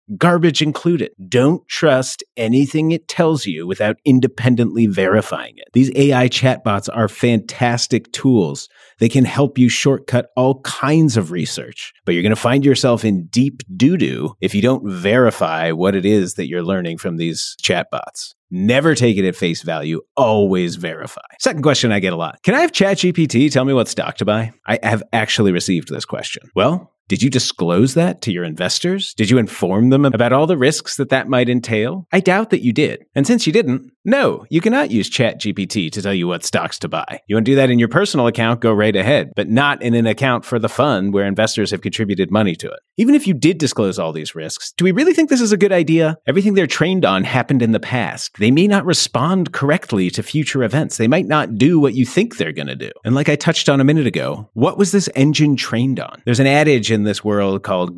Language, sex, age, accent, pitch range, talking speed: English, male, 30-49, American, 105-150 Hz, 220 wpm